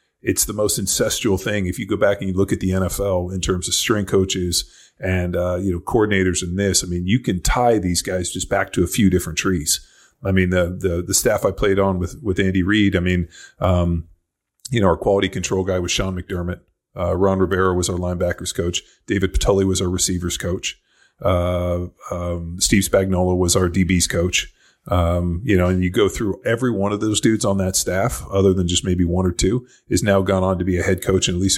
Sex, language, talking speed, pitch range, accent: male, English, 230 wpm, 90-95 Hz, American